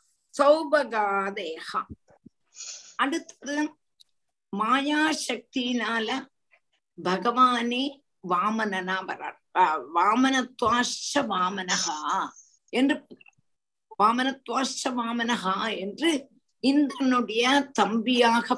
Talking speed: 50 wpm